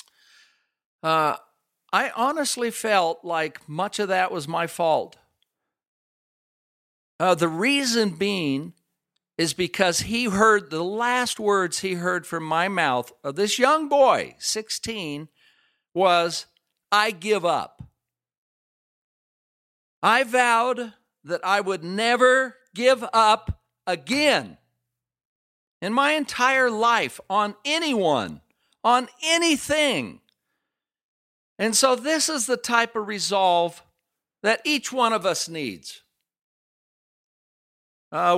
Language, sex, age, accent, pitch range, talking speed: English, male, 50-69, American, 170-235 Hz, 105 wpm